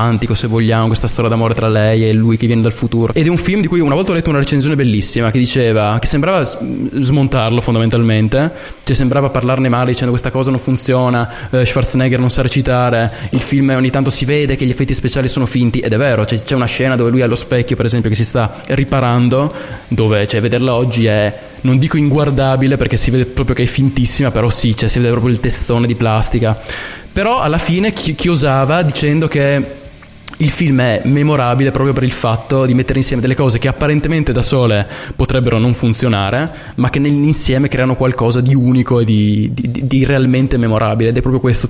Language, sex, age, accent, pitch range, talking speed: Italian, male, 20-39, native, 115-135 Hz, 210 wpm